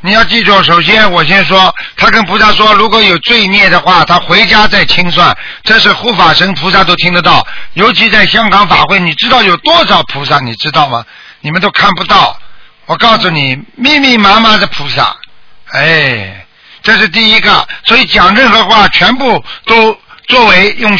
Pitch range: 160-215 Hz